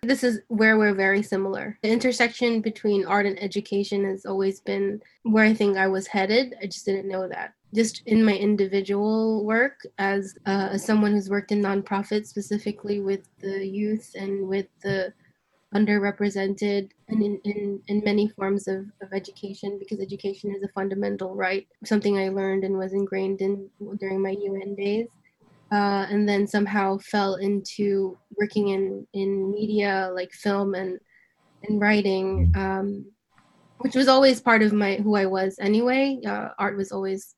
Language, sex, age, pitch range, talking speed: English, female, 20-39, 195-210 Hz, 160 wpm